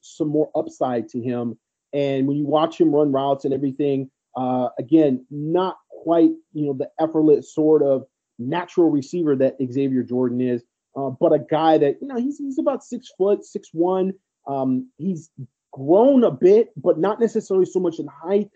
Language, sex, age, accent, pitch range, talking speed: English, male, 30-49, American, 135-175 Hz, 180 wpm